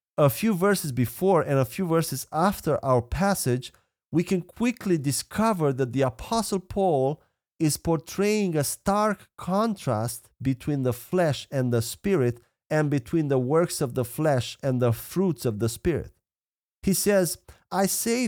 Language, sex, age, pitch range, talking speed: English, male, 40-59, 125-180 Hz, 155 wpm